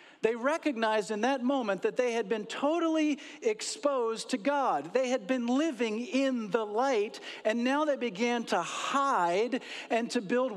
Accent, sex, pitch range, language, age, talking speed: American, male, 210-275 Hz, English, 50-69, 165 wpm